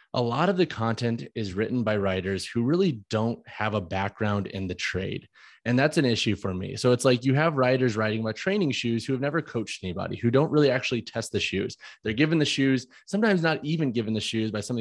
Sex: male